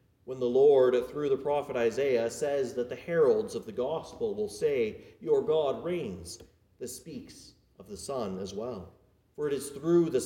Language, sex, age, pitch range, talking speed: English, male, 40-59, 120-160 Hz, 180 wpm